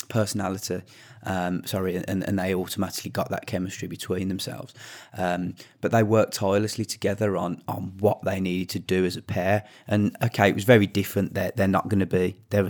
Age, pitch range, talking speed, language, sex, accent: 30-49, 95-110 Hz, 195 wpm, English, male, British